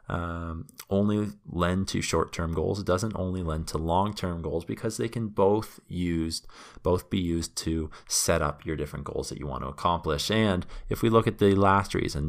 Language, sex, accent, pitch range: English, male, American, 80-105 Hz